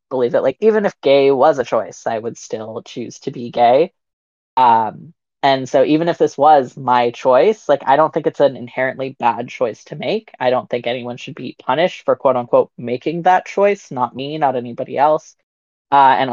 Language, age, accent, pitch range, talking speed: English, 20-39, American, 125-155 Hz, 205 wpm